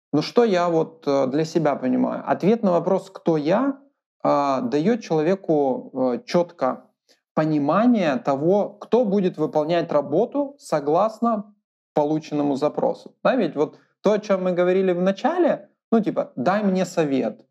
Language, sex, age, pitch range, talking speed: Russian, male, 20-39, 155-225 Hz, 130 wpm